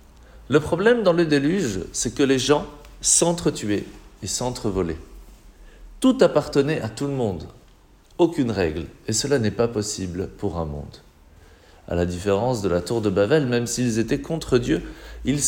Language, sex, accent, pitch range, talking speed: French, male, French, 100-165 Hz, 165 wpm